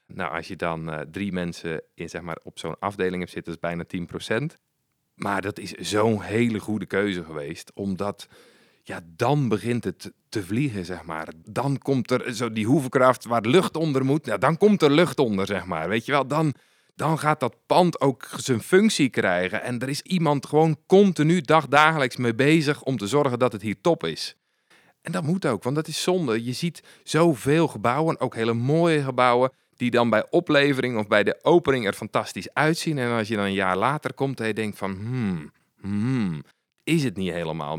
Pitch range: 100-150 Hz